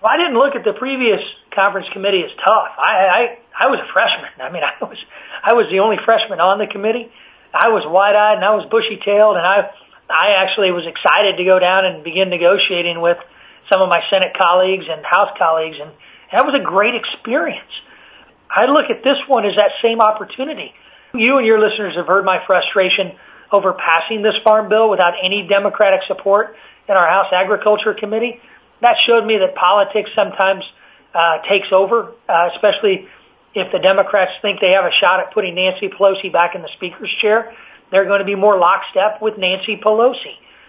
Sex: male